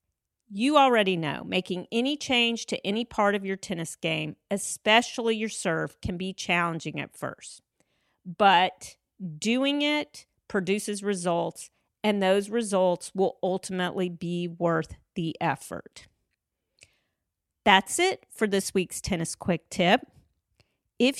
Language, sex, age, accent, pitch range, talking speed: English, female, 40-59, American, 180-235 Hz, 125 wpm